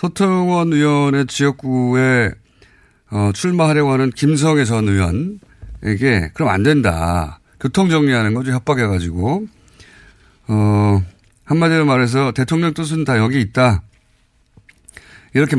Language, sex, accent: Korean, male, native